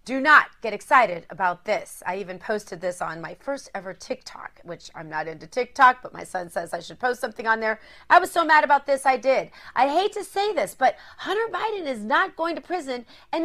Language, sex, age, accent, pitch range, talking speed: English, female, 30-49, American, 220-305 Hz, 230 wpm